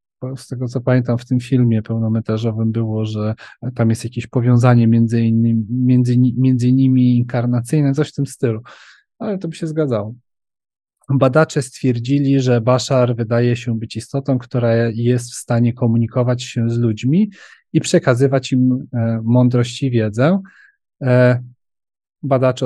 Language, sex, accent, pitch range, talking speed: Polish, male, native, 120-135 Hz, 145 wpm